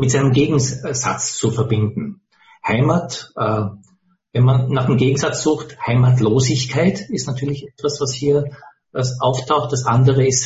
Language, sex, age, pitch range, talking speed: English, male, 60-79, 125-150 Hz, 125 wpm